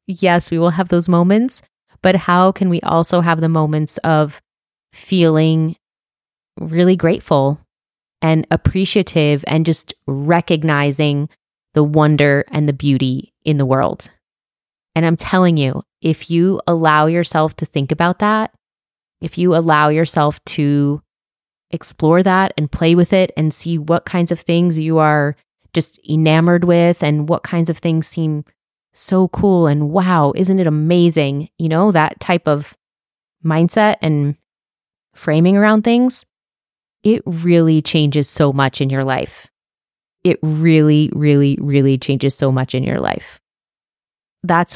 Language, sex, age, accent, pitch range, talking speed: English, female, 20-39, American, 155-175 Hz, 145 wpm